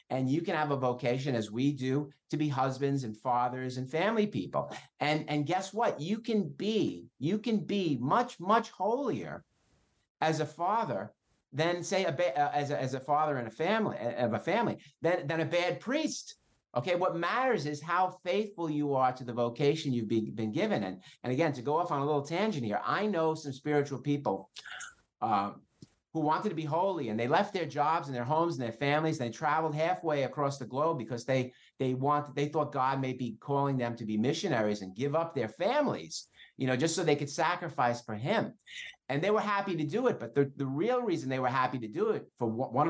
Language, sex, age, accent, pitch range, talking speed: English, male, 50-69, American, 120-165 Hz, 220 wpm